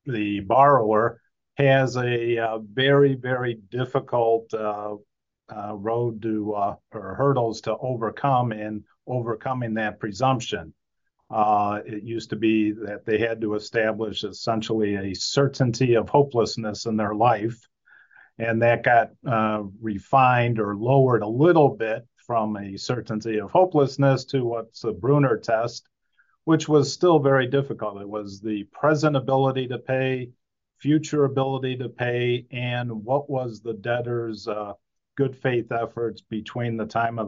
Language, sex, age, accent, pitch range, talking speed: English, male, 40-59, American, 110-130 Hz, 140 wpm